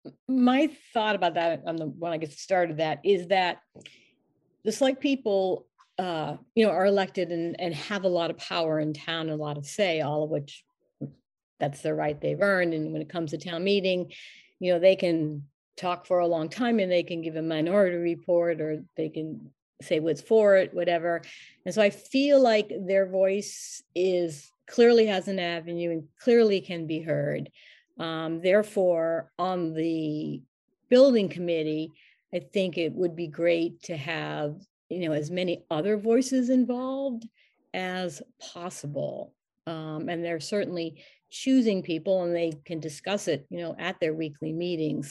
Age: 40-59